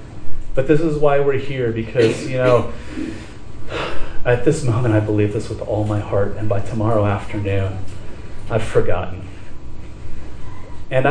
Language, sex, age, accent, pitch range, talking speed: English, male, 30-49, American, 105-130 Hz, 140 wpm